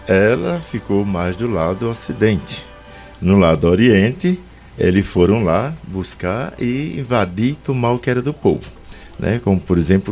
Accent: Brazilian